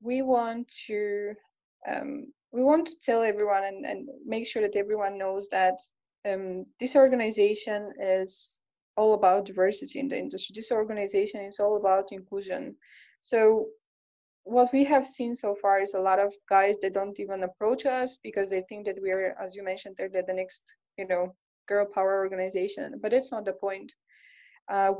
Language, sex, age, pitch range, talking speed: English, female, 20-39, 195-230 Hz, 180 wpm